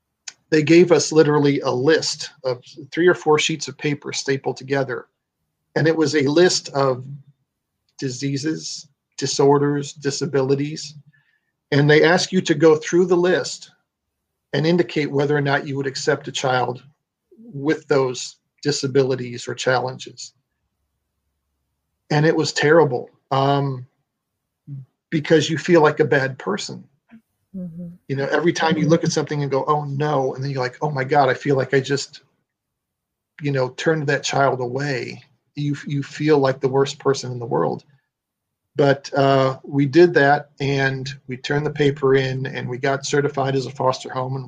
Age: 40-59